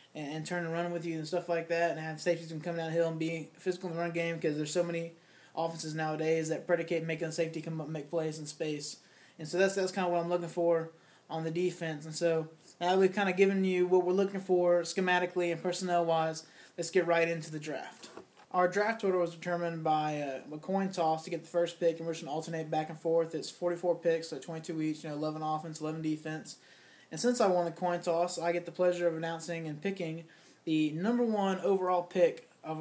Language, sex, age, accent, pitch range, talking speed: English, male, 20-39, American, 160-185 Hz, 240 wpm